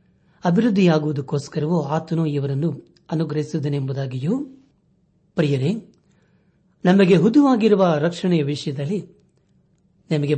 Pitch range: 145-180 Hz